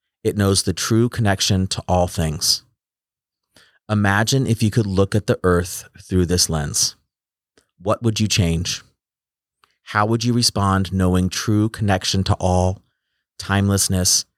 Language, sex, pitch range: English, male, 90-110 Hz